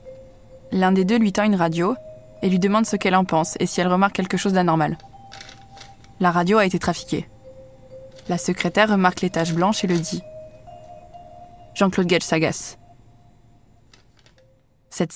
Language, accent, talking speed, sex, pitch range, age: French, French, 155 wpm, female, 130-195 Hz, 20-39